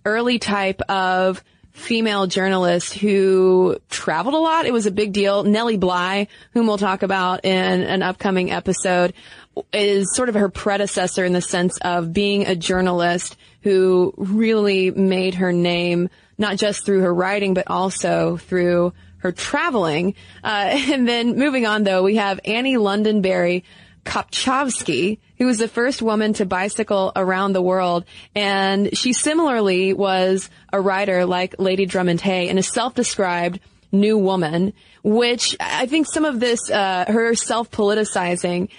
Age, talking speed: 20-39, 150 wpm